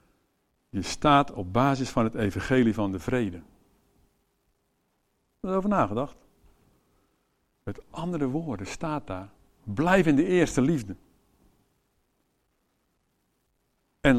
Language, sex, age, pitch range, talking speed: English, male, 60-79, 105-150 Hz, 110 wpm